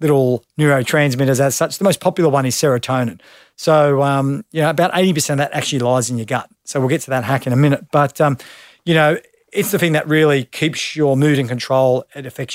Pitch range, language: 130-150 Hz, English